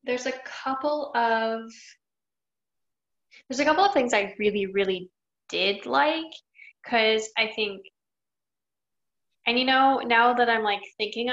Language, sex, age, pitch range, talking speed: English, female, 10-29, 195-250 Hz, 130 wpm